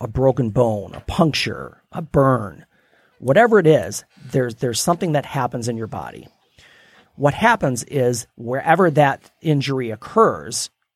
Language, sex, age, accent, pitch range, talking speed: English, male, 40-59, American, 125-160 Hz, 135 wpm